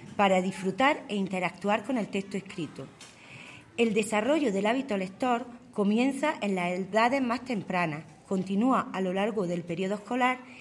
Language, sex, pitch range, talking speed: Spanish, female, 185-240 Hz, 145 wpm